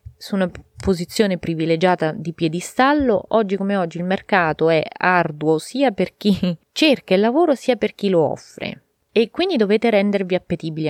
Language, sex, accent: Italian, female, native